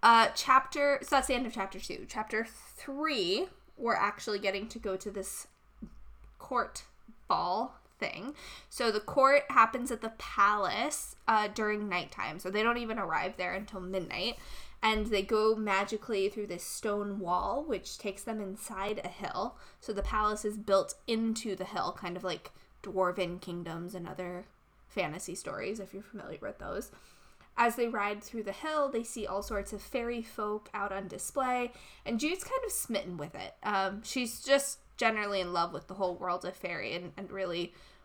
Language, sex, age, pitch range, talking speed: English, female, 10-29, 185-225 Hz, 180 wpm